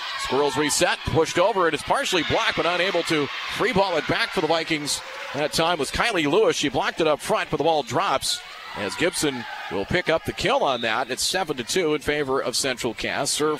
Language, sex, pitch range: English, male, 150-175 Hz